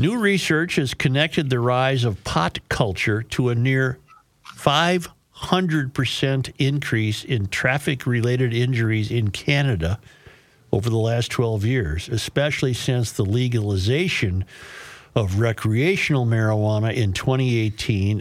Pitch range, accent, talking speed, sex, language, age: 105-130 Hz, American, 110 wpm, male, English, 50-69